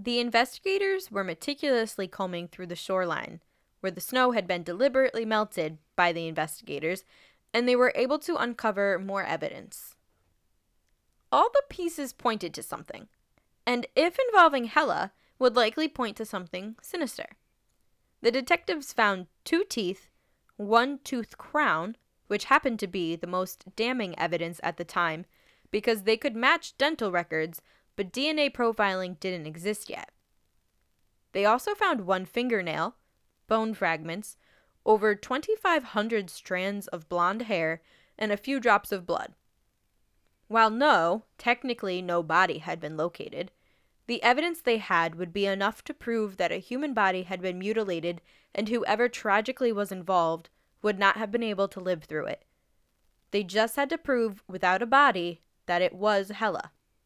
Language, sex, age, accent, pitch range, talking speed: English, female, 10-29, American, 175-245 Hz, 150 wpm